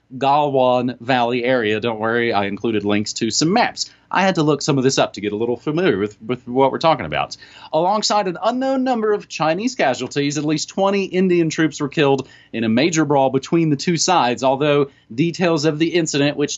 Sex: male